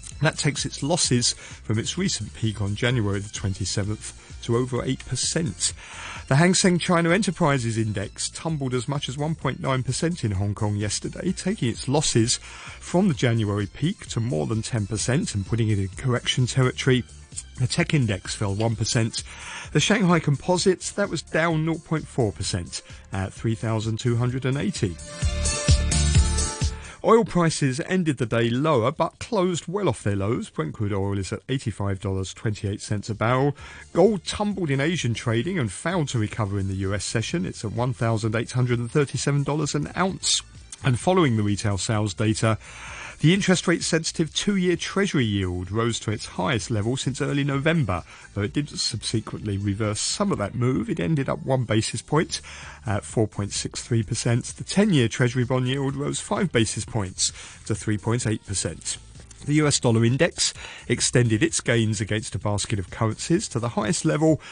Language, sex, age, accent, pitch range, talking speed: English, male, 40-59, British, 105-150 Hz, 155 wpm